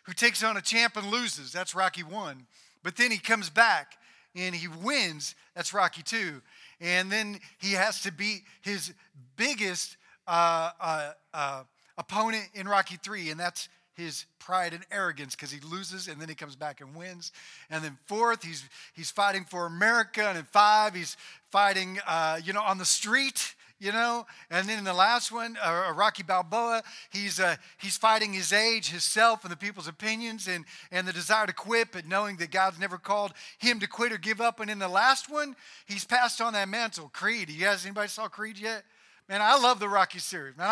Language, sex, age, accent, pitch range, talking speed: English, male, 40-59, American, 180-225 Hz, 200 wpm